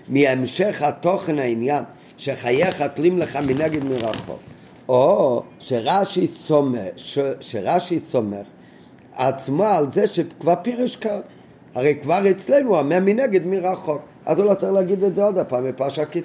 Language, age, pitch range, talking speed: Hebrew, 50-69, 135-185 Hz, 125 wpm